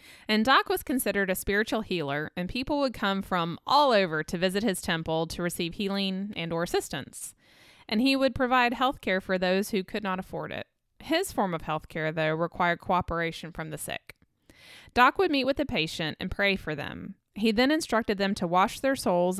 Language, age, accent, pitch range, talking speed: English, 20-39, American, 170-225 Hz, 205 wpm